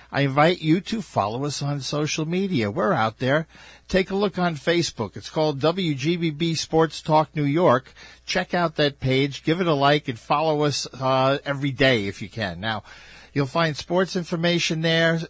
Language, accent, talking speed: English, American, 185 wpm